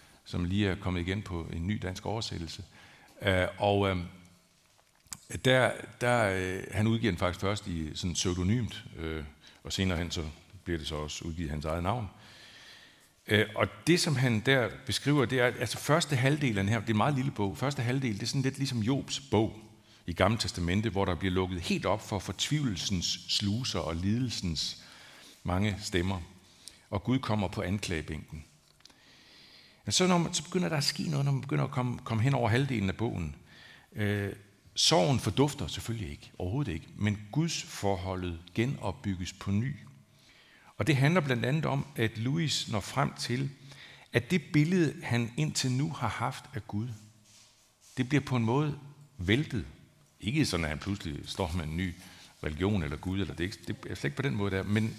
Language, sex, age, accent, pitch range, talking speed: Danish, male, 60-79, native, 90-130 Hz, 175 wpm